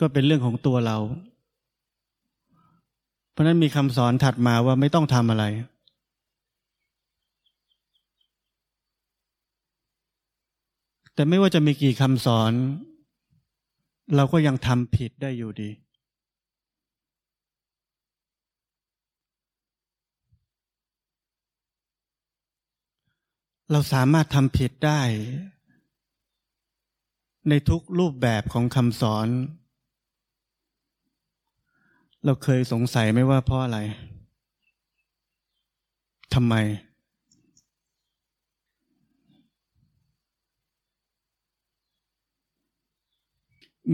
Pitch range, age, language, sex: 120-150 Hz, 20-39, Thai, male